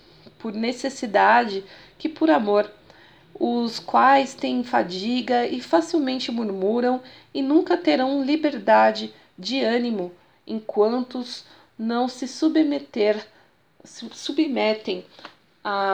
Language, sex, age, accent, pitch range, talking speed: Portuguese, female, 40-59, Brazilian, 210-295 Hz, 90 wpm